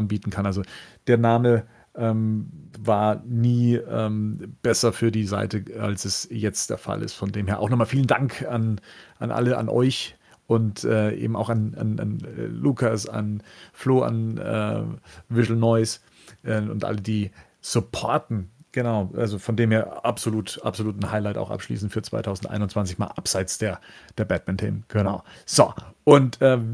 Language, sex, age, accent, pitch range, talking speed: German, male, 40-59, German, 105-130 Hz, 160 wpm